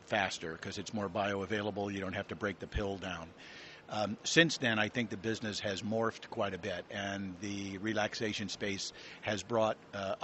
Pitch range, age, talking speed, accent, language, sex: 100-110 Hz, 50-69, 190 wpm, American, English, male